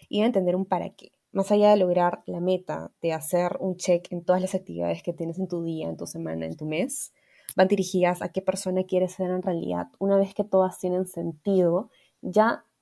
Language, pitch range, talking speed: Spanish, 170-195 Hz, 220 wpm